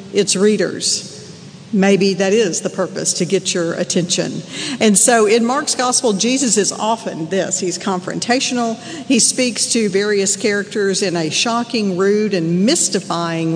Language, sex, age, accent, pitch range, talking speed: English, female, 50-69, American, 180-220 Hz, 145 wpm